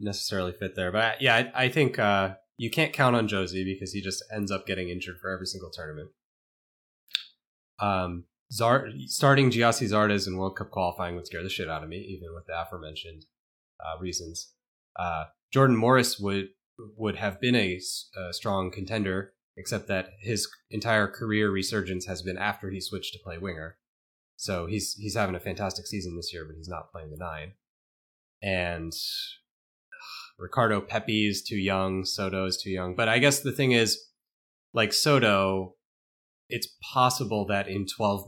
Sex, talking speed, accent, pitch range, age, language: male, 170 wpm, American, 85-105 Hz, 20-39, English